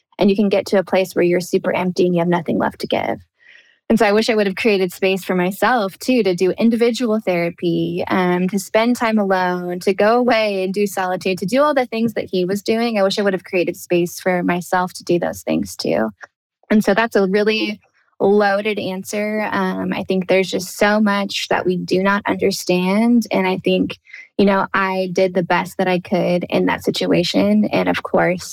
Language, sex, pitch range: English, female, 175-205 Hz